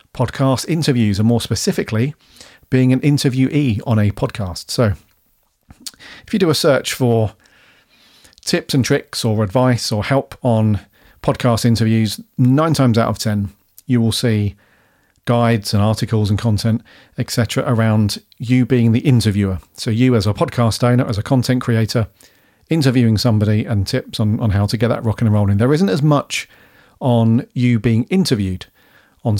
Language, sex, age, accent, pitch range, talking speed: English, male, 40-59, British, 110-130 Hz, 160 wpm